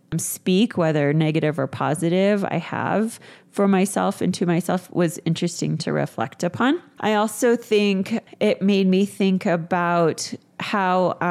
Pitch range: 175-210 Hz